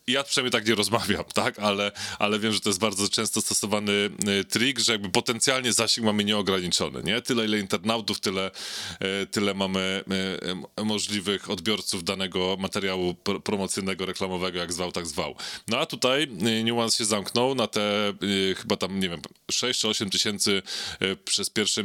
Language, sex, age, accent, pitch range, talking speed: Polish, male, 20-39, native, 100-115 Hz, 155 wpm